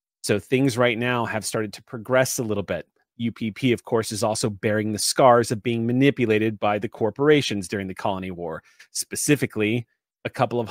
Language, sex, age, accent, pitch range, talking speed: English, male, 30-49, American, 110-140 Hz, 185 wpm